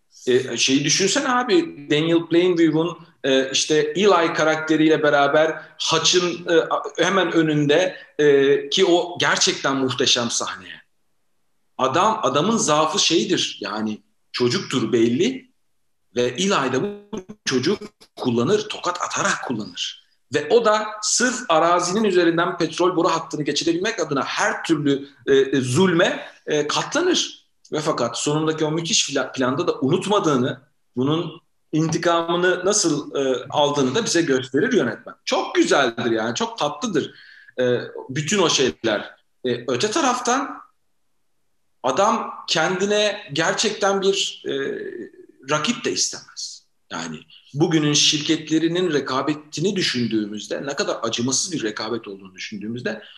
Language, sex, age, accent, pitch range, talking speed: Turkish, male, 40-59, native, 140-195 Hz, 110 wpm